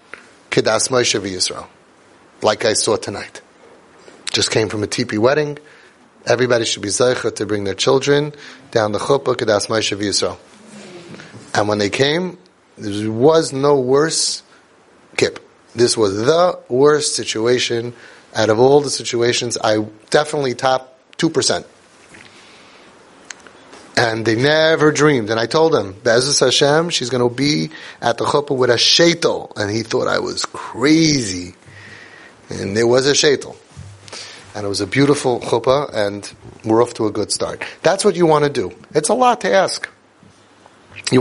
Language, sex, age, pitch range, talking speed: English, male, 30-49, 115-160 Hz, 150 wpm